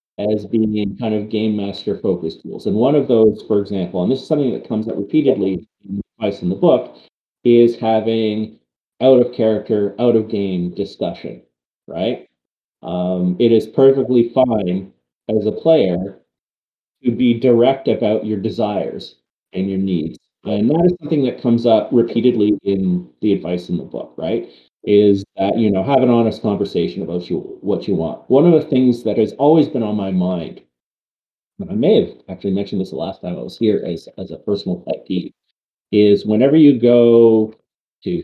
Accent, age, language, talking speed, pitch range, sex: American, 30-49, English, 185 wpm, 95-120 Hz, male